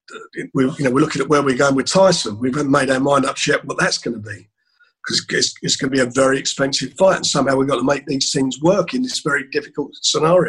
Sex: male